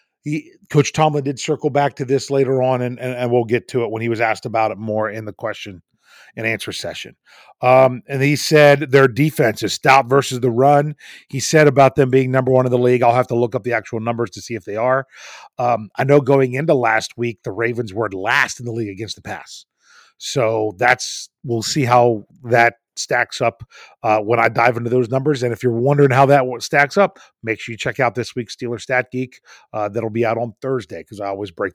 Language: English